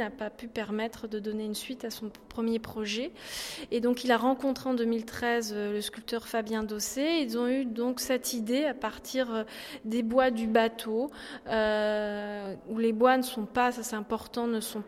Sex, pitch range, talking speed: female, 215-255 Hz, 190 wpm